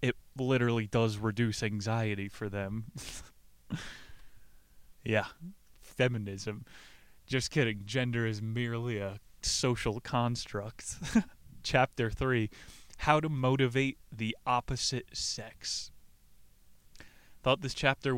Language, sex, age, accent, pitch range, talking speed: English, male, 20-39, American, 110-135 Hz, 90 wpm